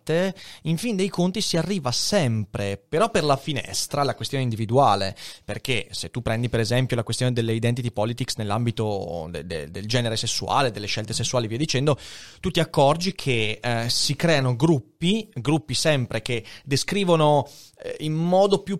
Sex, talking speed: male, 155 wpm